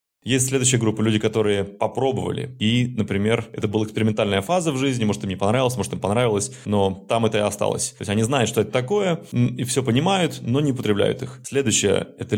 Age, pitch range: 20-39, 100-130 Hz